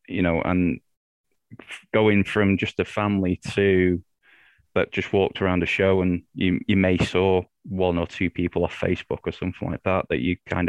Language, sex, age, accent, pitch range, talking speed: English, male, 20-39, British, 90-105 Hz, 185 wpm